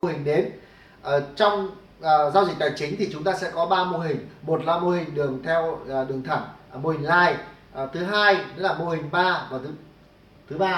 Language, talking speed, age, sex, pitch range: Vietnamese, 235 wpm, 20-39, male, 155-200 Hz